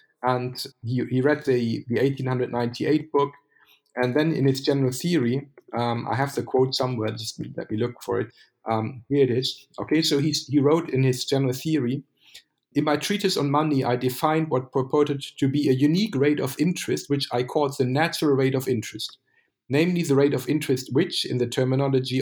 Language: English